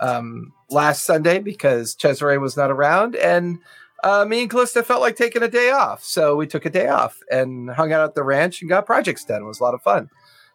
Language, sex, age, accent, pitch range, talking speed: English, male, 40-59, American, 135-190 Hz, 240 wpm